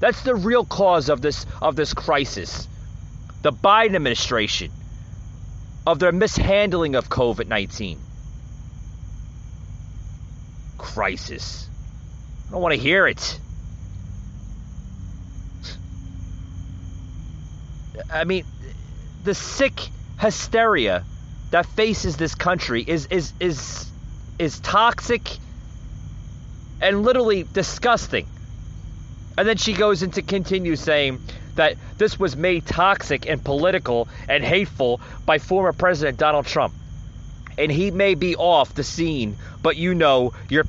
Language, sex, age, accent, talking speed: English, male, 30-49, American, 110 wpm